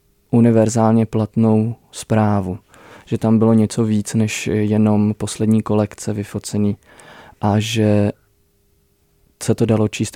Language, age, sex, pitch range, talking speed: Czech, 20-39, male, 105-115 Hz, 110 wpm